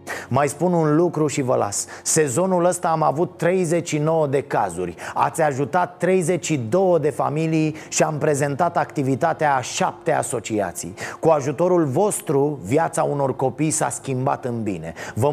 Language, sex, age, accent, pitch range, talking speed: Romanian, male, 30-49, native, 130-155 Hz, 145 wpm